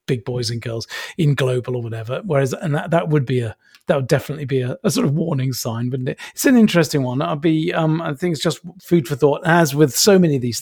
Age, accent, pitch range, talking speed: 40-59, British, 125-155 Hz, 265 wpm